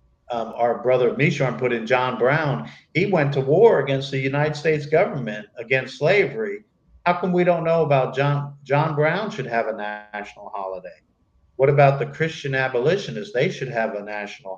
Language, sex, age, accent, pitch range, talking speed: English, male, 50-69, American, 120-145 Hz, 175 wpm